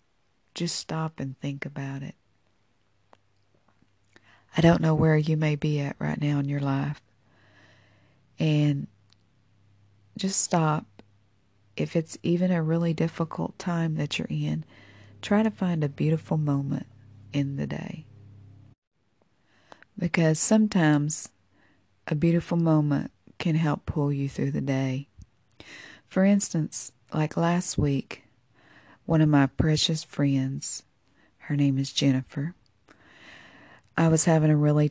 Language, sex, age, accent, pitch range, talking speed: English, female, 40-59, American, 125-160 Hz, 125 wpm